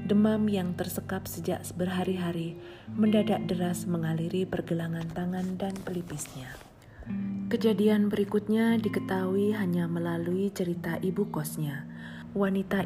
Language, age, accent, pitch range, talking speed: Indonesian, 40-59, native, 130-195 Hz, 100 wpm